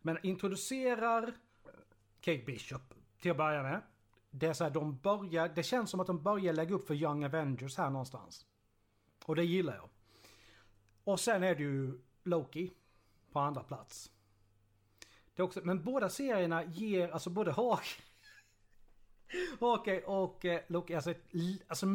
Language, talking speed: Swedish, 150 wpm